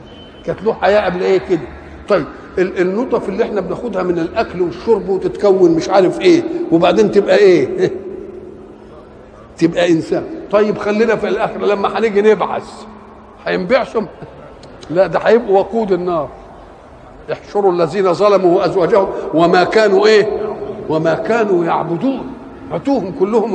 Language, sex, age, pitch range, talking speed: Arabic, male, 50-69, 185-260 Hz, 120 wpm